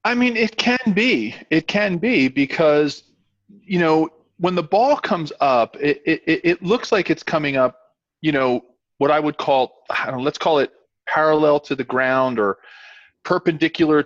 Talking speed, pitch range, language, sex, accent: 180 wpm, 130-180 Hz, English, male, American